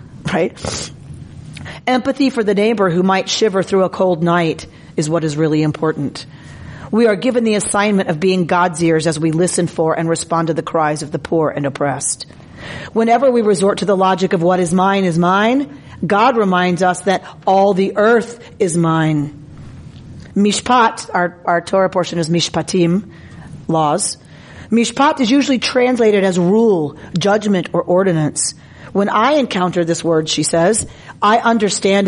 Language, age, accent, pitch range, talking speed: English, 40-59, American, 165-210 Hz, 165 wpm